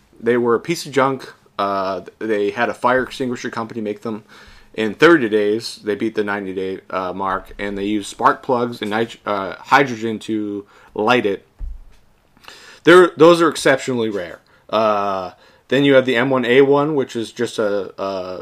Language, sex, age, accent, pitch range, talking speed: English, male, 20-39, American, 105-125 Hz, 160 wpm